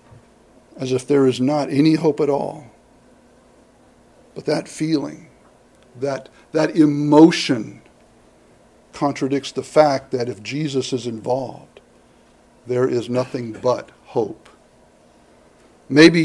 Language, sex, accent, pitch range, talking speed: English, male, American, 135-165 Hz, 105 wpm